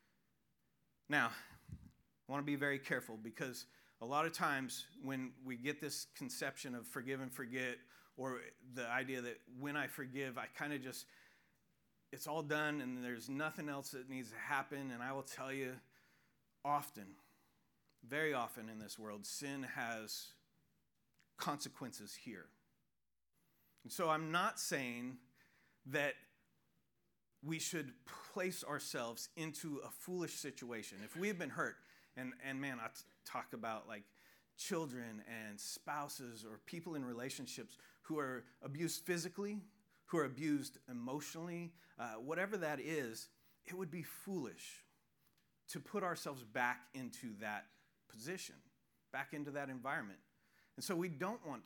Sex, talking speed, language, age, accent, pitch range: male, 145 wpm, English, 40-59, American, 125-155 Hz